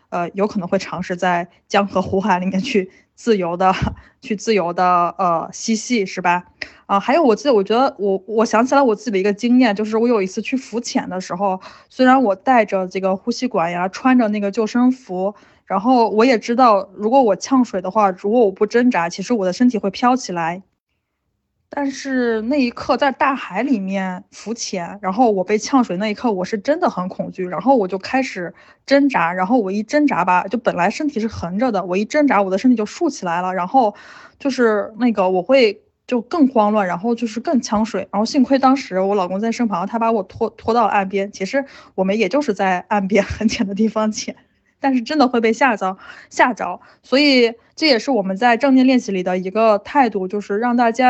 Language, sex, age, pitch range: Chinese, female, 20-39, 190-250 Hz